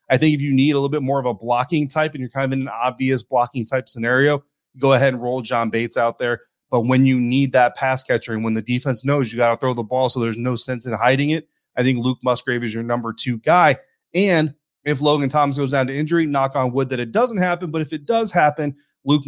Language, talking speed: English, 270 wpm